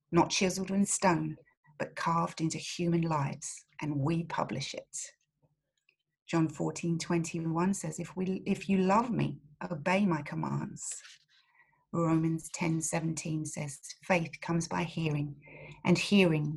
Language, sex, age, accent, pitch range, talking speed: English, female, 40-59, British, 155-185 Hz, 125 wpm